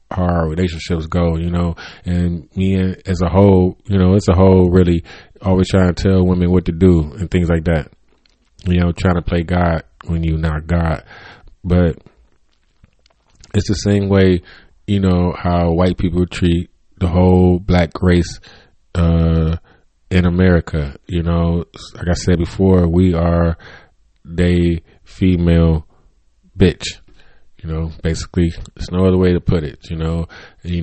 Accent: American